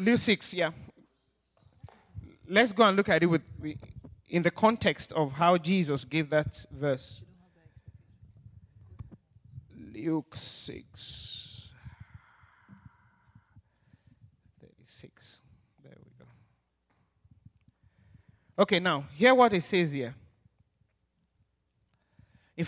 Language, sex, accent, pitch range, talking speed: English, male, Nigerian, 120-180 Hz, 90 wpm